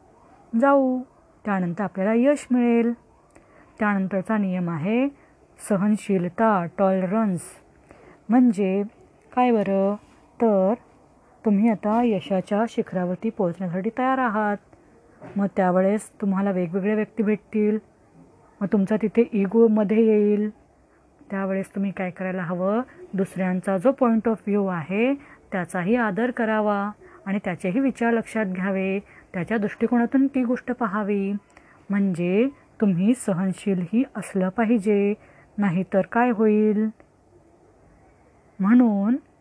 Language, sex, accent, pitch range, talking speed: Marathi, female, native, 195-235 Hz, 100 wpm